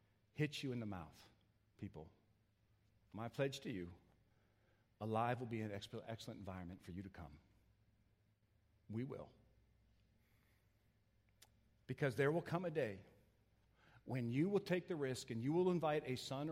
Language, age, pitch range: English, 50-69, 105-145 Hz